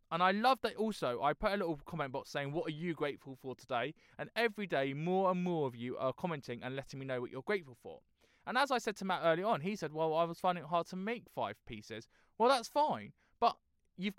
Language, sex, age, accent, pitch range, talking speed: English, male, 20-39, British, 135-195 Hz, 260 wpm